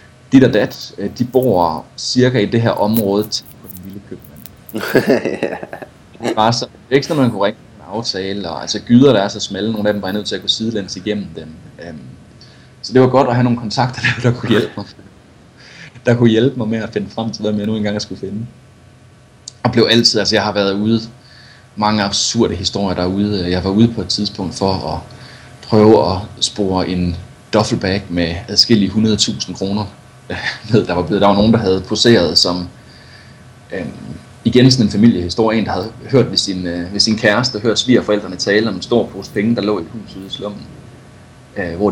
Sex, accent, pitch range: male, native, 100-120 Hz